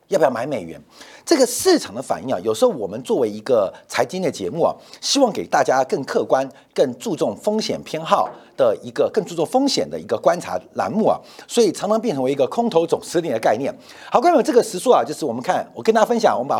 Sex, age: male, 50-69